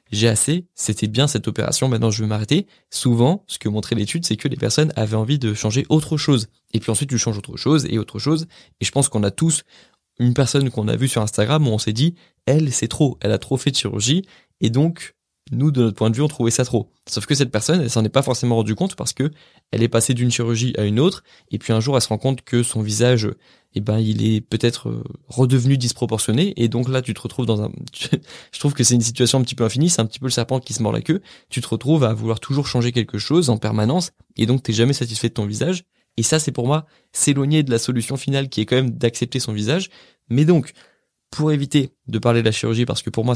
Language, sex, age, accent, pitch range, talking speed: French, male, 20-39, French, 110-140 Hz, 260 wpm